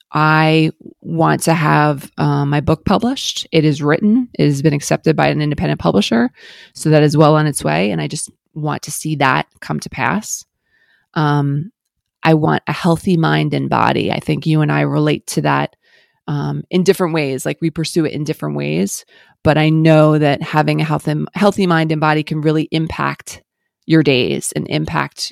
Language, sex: English, female